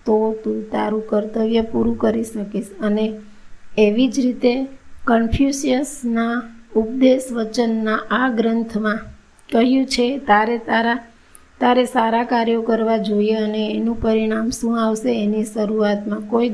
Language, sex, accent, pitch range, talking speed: Gujarati, female, native, 215-240 Hz, 85 wpm